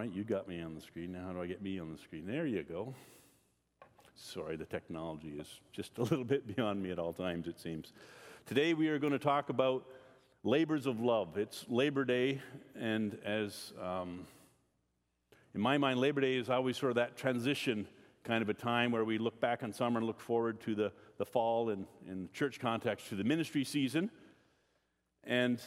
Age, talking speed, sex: 50-69, 200 wpm, male